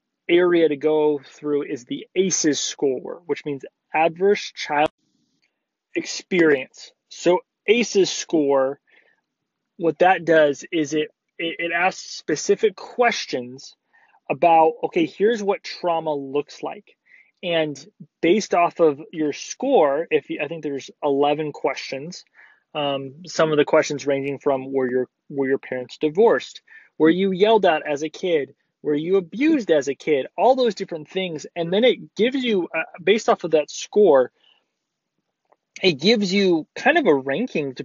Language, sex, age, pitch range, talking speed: English, male, 20-39, 145-195 Hz, 145 wpm